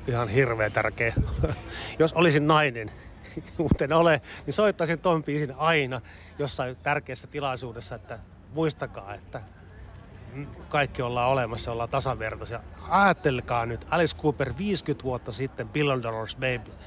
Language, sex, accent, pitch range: Finnish, male, native, 110-155 Hz